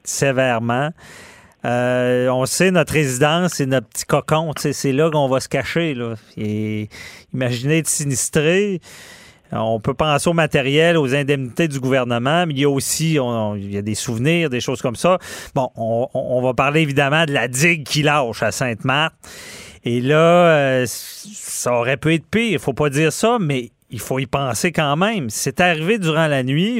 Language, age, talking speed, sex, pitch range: French, 40-59, 190 wpm, male, 130-175 Hz